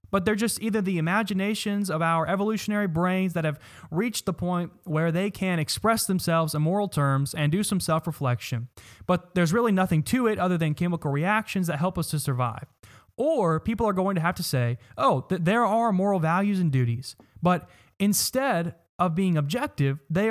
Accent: American